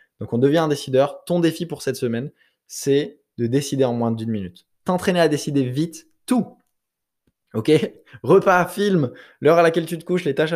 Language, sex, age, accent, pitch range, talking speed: French, male, 20-39, French, 120-155 Hz, 190 wpm